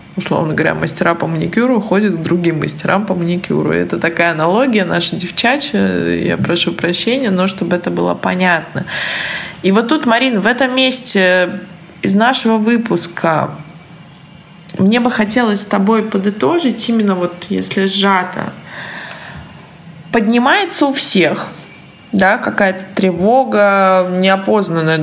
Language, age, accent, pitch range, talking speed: Russian, 20-39, native, 175-220 Hz, 120 wpm